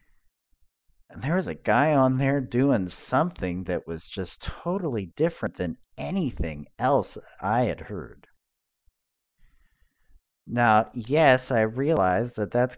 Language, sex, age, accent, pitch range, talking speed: English, male, 50-69, American, 85-130 Hz, 115 wpm